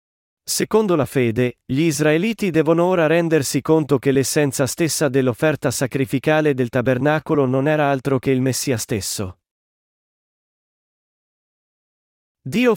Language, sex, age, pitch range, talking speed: Italian, male, 40-59, 130-160 Hz, 115 wpm